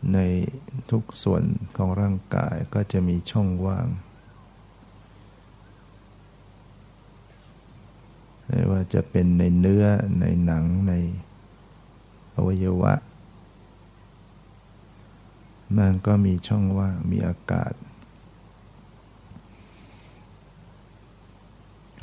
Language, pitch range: Thai, 95-105 Hz